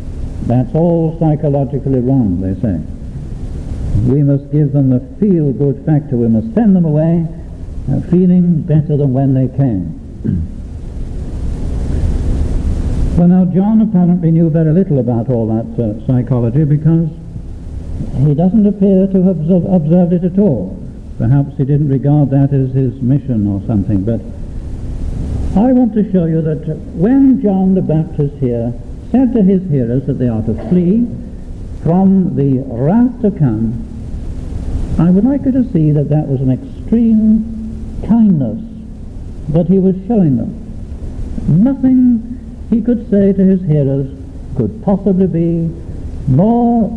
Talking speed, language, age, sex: 140 wpm, English, 60-79, male